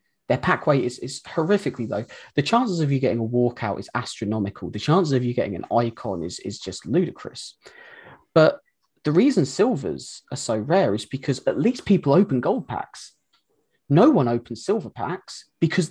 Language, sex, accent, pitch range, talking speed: English, male, British, 120-170 Hz, 180 wpm